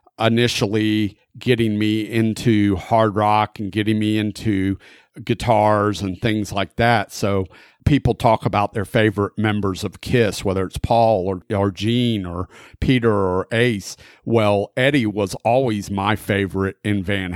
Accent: American